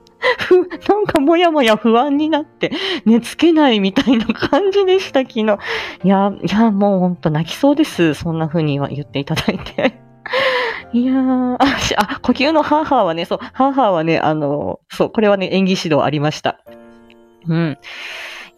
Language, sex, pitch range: Japanese, female, 175-265 Hz